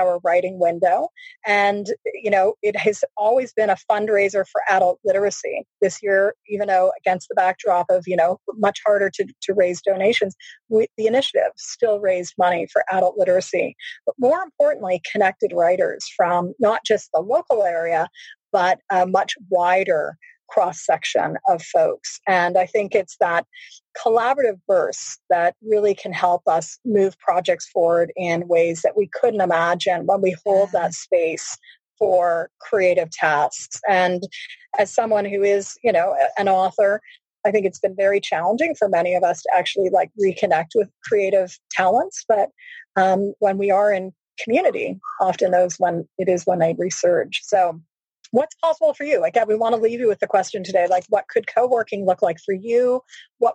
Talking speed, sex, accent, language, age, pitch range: 175 wpm, female, American, English, 30-49, 180-235 Hz